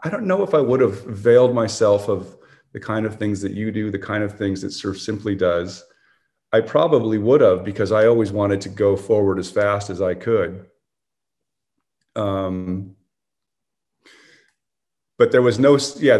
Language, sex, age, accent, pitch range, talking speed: English, male, 30-49, American, 95-115 Hz, 175 wpm